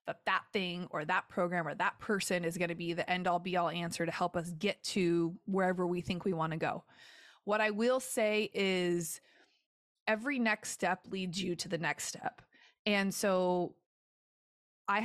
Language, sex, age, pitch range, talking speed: English, female, 20-39, 175-215 Hz, 190 wpm